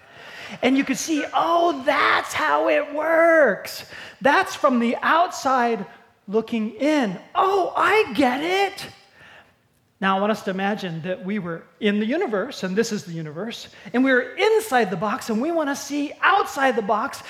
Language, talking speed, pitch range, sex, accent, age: English, 170 wpm, 205-325 Hz, male, American, 30-49